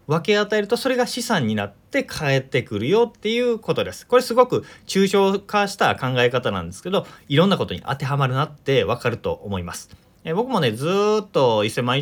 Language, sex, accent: Japanese, male, native